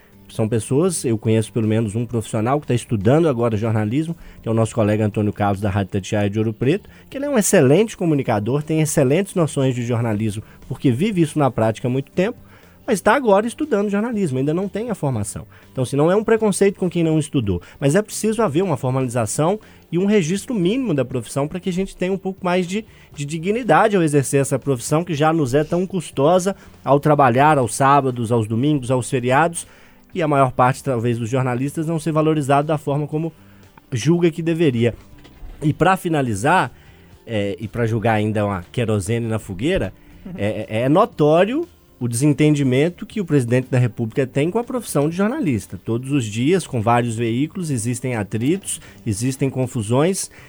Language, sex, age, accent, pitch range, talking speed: Portuguese, male, 20-39, Brazilian, 115-165 Hz, 190 wpm